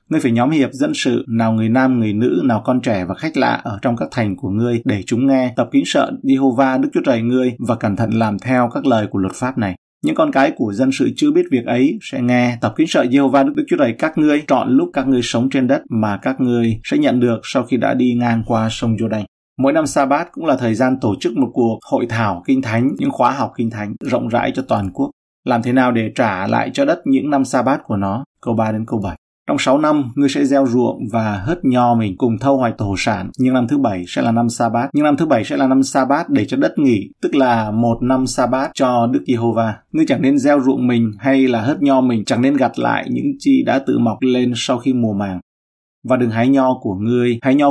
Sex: male